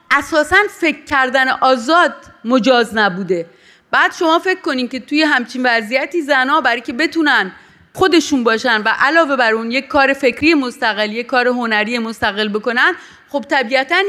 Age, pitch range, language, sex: 30-49, 235-310 Hz, Persian, female